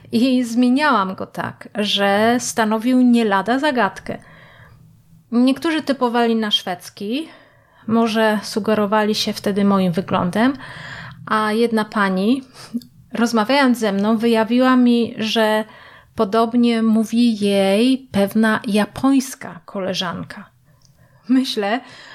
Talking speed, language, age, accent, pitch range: 95 wpm, Polish, 30-49, native, 200-245 Hz